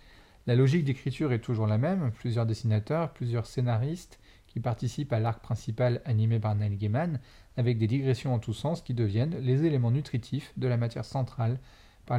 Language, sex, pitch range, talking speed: French, male, 115-140 Hz, 175 wpm